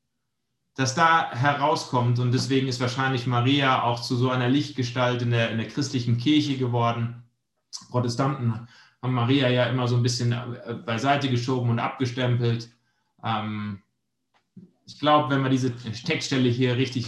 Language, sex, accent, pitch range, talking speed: German, male, German, 120-140 Hz, 135 wpm